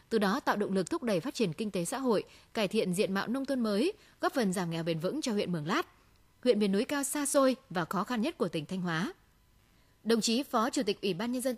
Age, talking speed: 20-39, 275 wpm